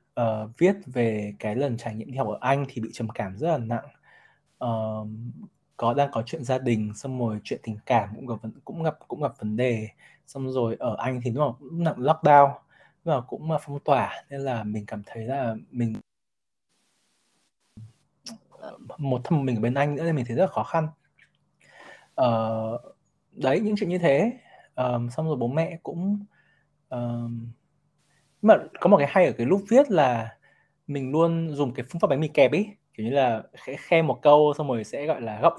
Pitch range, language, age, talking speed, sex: 115-155 Hz, Vietnamese, 20-39, 200 wpm, male